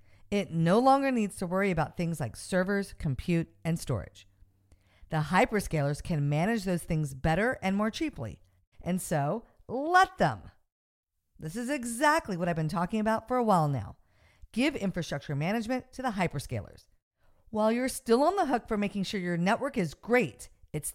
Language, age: English, 50-69